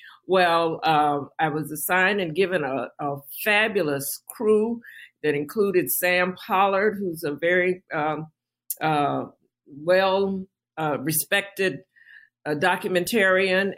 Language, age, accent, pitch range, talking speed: English, 50-69, American, 160-205 Hz, 100 wpm